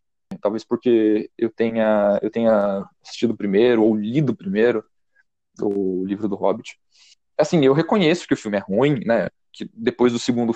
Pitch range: 110-150 Hz